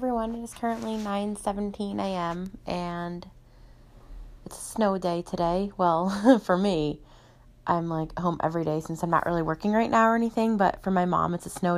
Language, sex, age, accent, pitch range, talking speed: English, female, 20-39, American, 155-180 Hz, 190 wpm